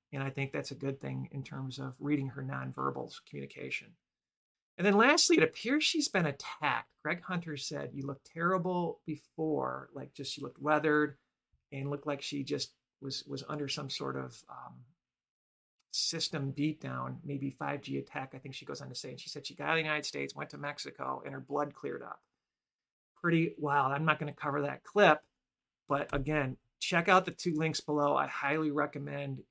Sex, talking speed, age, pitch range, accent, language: male, 195 wpm, 40-59, 135-160 Hz, American, English